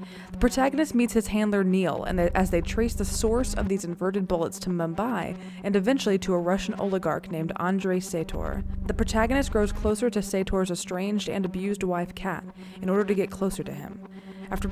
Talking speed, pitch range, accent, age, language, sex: 190 wpm, 180-225 Hz, American, 20-39, English, female